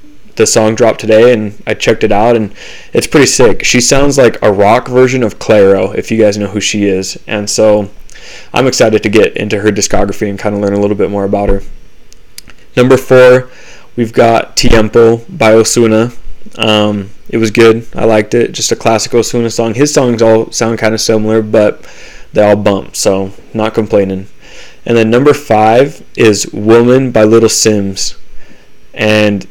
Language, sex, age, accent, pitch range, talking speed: English, male, 20-39, American, 105-120 Hz, 185 wpm